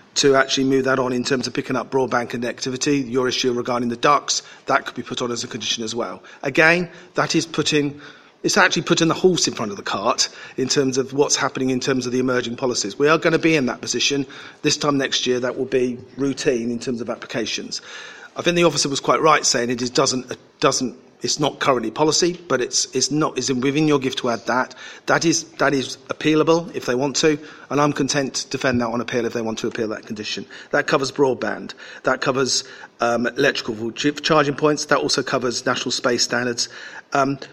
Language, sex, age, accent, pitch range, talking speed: English, male, 40-59, British, 120-145 Hz, 220 wpm